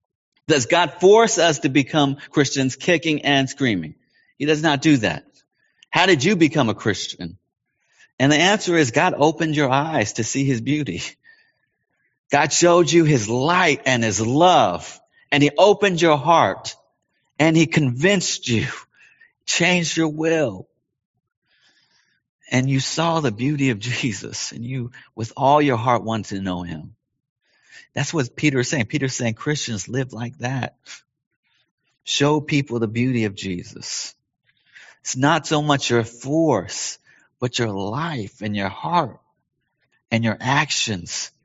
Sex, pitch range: male, 120-155 Hz